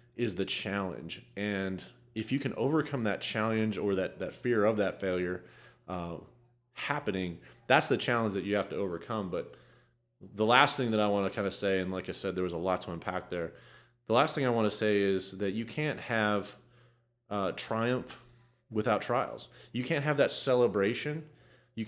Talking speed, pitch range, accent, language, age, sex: 195 wpm, 95-120 Hz, American, English, 30-49, male